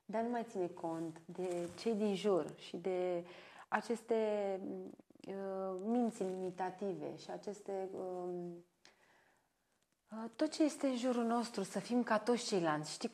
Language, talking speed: Romanian, 140 wpm